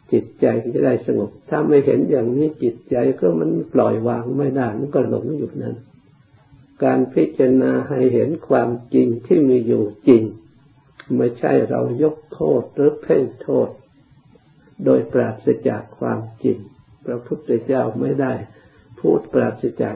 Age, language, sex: 60-79, Thai, male